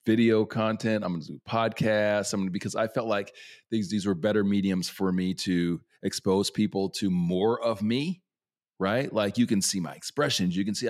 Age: 40-59